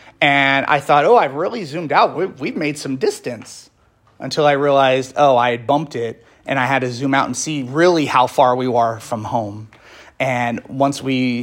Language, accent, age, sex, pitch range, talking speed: English, American, 30-49, male, 125-150 Hz, 200 wpm